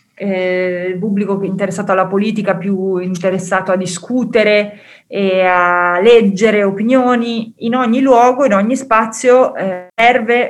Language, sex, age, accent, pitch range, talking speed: Italian, female, 30-49, native, 180-220 Hz, 115 wpm